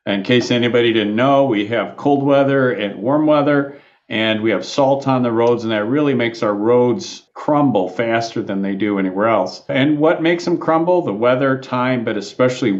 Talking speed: 195 wpm